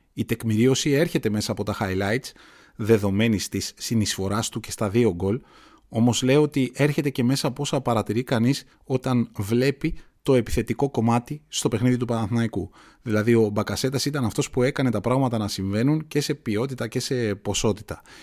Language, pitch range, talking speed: Greek, 105-130 Hz, 170 wpm